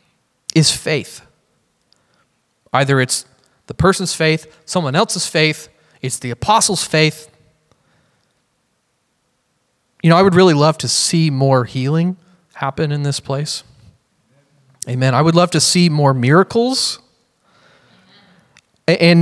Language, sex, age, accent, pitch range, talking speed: English, male, 30-49, American, 140-195 Hz, 115 wpm